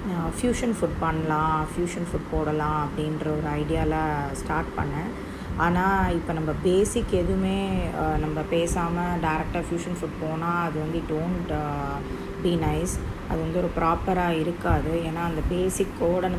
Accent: native